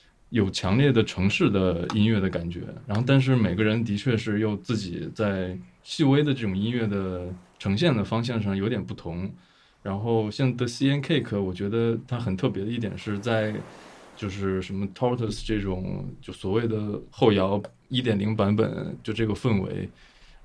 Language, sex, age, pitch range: Chinese, male, 20-39, 95-115 Hz